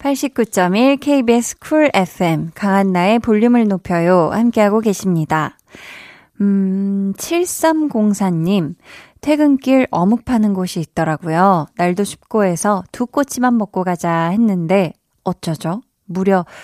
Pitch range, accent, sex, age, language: 180-255 Hz, native, female, 20-39, Korean